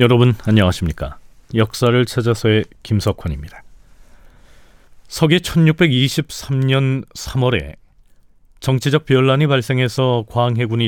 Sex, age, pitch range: male, 40-59, 100-140 Hz